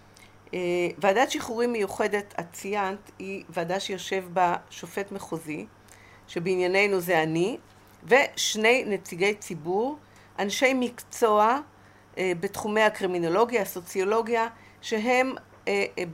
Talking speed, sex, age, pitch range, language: 95 wpm, female, 50-69, 180-230 Hz, Hebrew